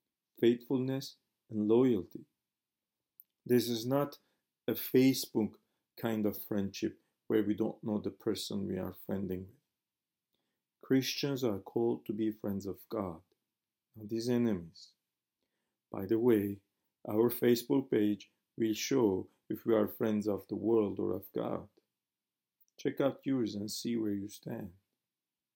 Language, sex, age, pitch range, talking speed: English, male, 50-69, 105-120 Hz, 135 wpm